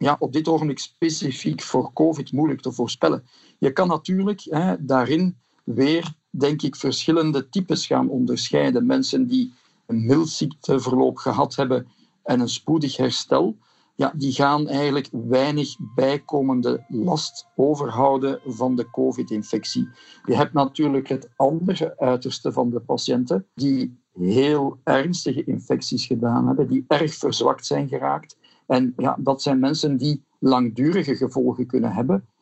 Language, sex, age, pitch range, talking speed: Dutch, male, 50-69, 130-150 Hz, 135 wpm